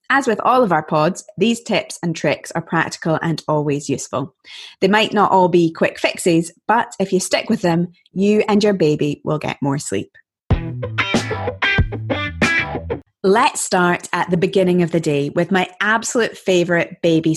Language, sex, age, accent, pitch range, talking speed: English, female, 20-39, British, 165-225 Hz, 170 wpm